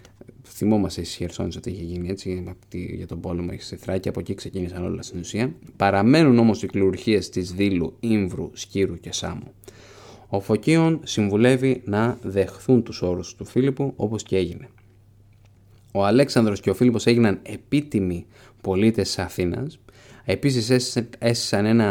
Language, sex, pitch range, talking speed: Greek, male, 95-125 Hz, 140 wpm